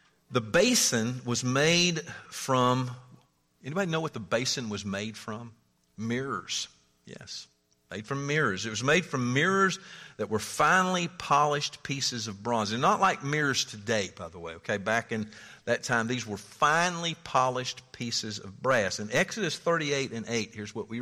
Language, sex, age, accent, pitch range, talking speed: English, male, 50-69, American, 105-150 Hz, 165 wpm